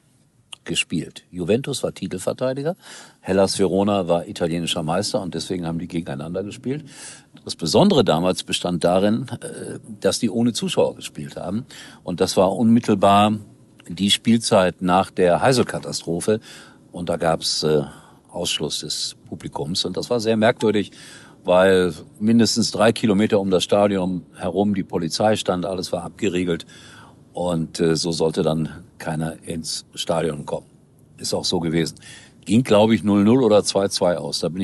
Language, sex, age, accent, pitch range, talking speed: German, male, 50-69, German, 85-115 Hz, 145 wpm